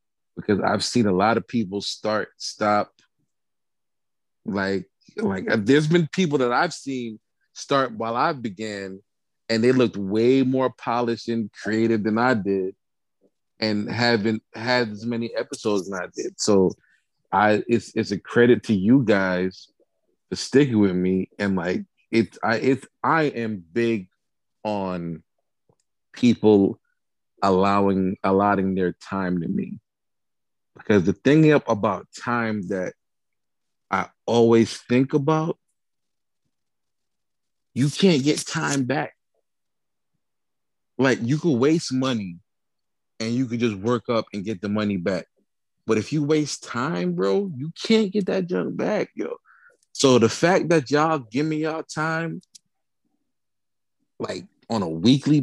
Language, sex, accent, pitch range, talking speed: English, male, American, 105-145 Hz, 140 wpm